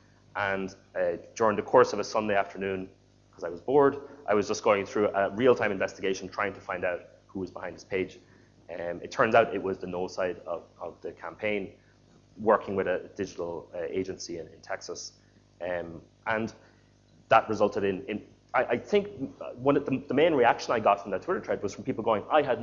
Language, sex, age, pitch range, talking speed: English, male, 30-49, 95-125 Hz, 210 wpm